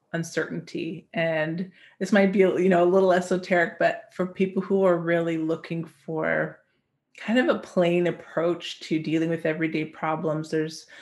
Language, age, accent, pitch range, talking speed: English, 30-49, American, 165-185 Hz, 160 wpm